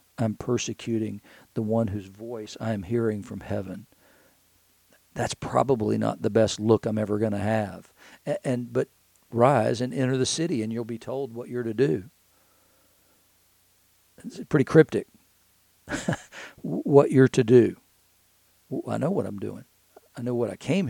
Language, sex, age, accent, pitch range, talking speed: English, male, 50-69, American, 110-130 Hz, 160 wpm